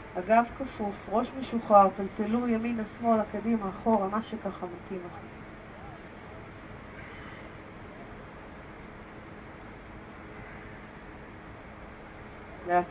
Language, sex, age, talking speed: Hebrew, female, 40-59, 65 wpm